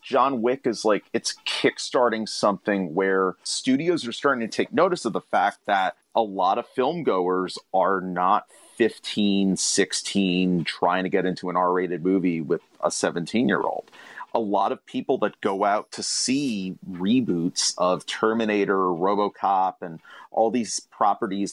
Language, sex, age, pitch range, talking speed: English, male, 30-49, 95-110 Hz, 160 wpm